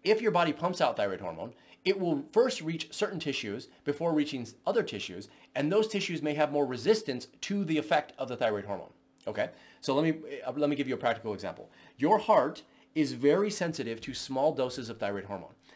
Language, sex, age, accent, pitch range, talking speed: English, male, 30-49, American, 115-165 Hz, 200 wpm